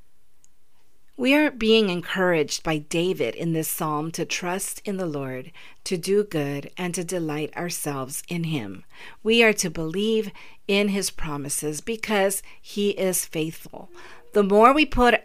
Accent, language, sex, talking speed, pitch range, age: American, English, female, 150 wpm, 165-200 Hz, 50-69